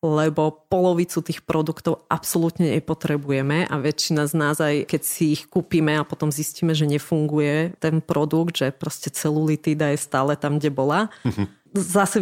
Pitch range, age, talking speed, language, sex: 150-180 Hz, 30-49, 150 wpm, Slovak, female